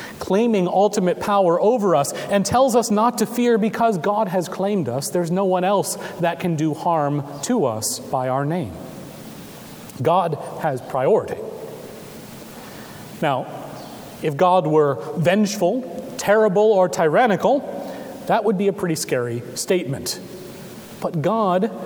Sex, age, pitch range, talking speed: male, 30-49, 165-205 Hz, 135 wpm